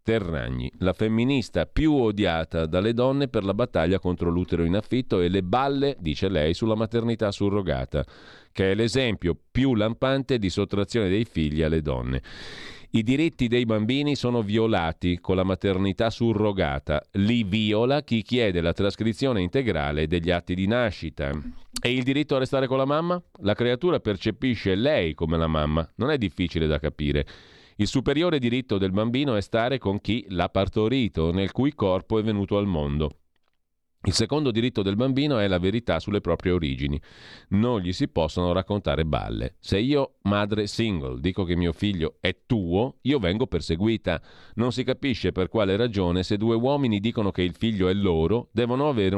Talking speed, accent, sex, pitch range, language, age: 170 wpm, native, male, 85-120 Hz, Italian, 40-59